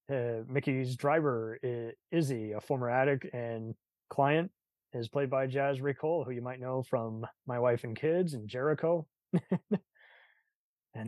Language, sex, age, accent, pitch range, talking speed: English, male, 20-39, American, 120-145 Hz, 145 wpm